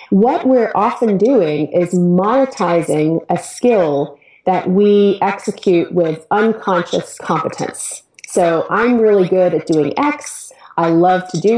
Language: English